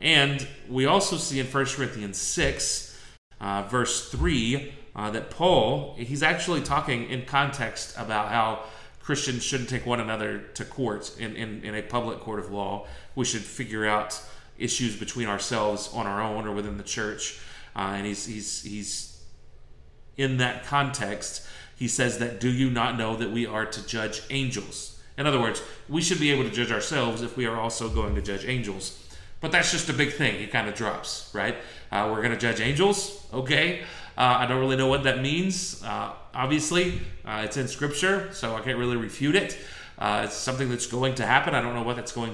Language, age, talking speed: English, 30-49, 195 wpm